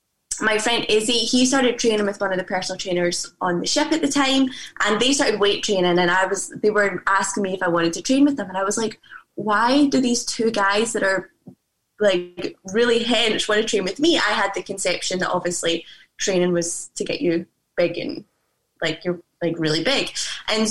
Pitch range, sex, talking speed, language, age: 185-235 Hz, female, 215 wpm, English, 20-39